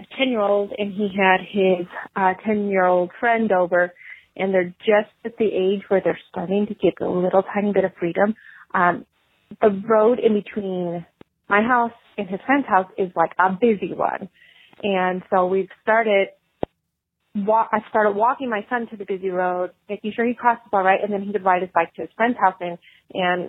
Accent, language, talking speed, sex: American, English, 190 wpm, female